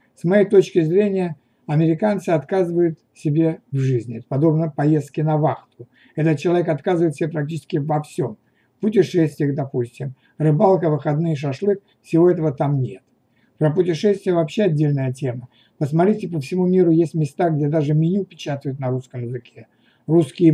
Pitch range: 135-180 Hz